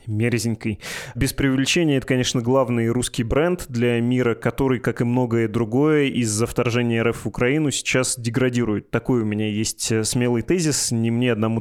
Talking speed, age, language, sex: 160 wpm, 20-39, Russian, male